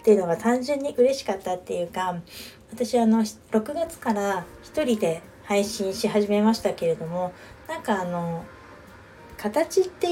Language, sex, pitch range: Japanese, female, 190-250 Hz